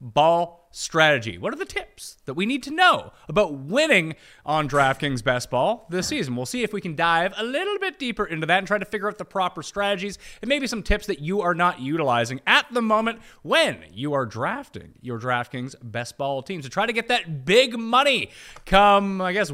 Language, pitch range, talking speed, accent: English, 145-215 Hz, 215 wpm, American